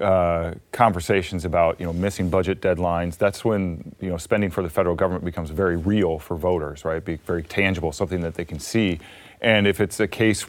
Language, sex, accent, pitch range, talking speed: English, male, American, 85-100 Hz, 205 wpm